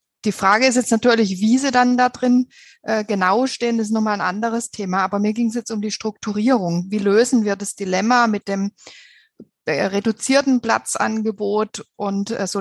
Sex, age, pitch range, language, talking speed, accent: female, 60-79, 200-240 Hz, German, 175 wpm, German